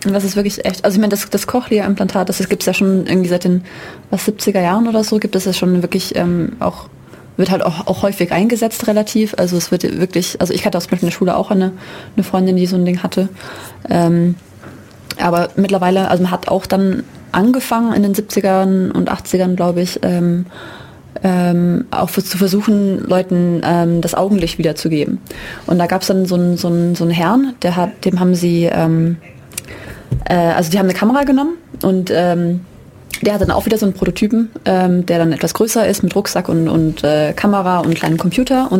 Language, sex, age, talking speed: German, female, 20-39, 205 wpm